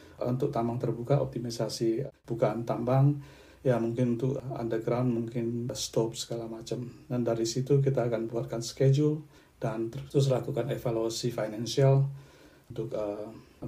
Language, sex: Indonesian, male